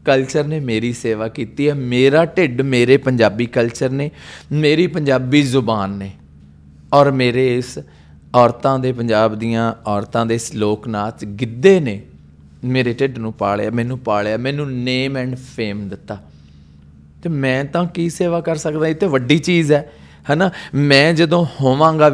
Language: Punjabi